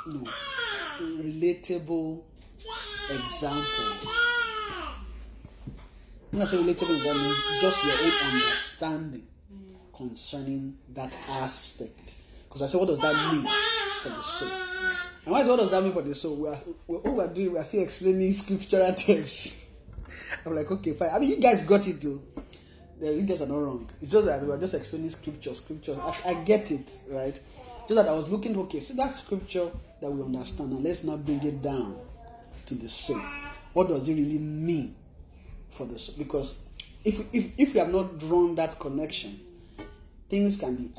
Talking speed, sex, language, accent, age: 160 wpm, male, English, Nigerian, 30-49